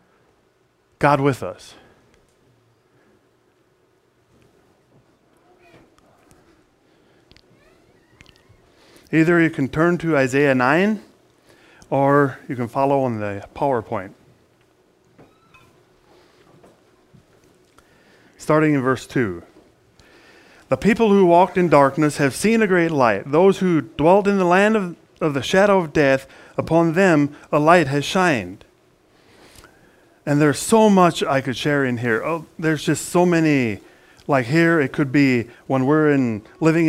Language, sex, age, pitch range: English, male, 40-59, 135-175 Hz